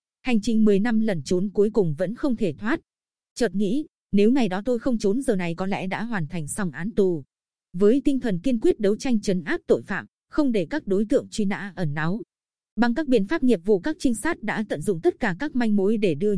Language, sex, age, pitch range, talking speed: Vietnamese, female, 20-39, 190-245 Hz, 255 wpm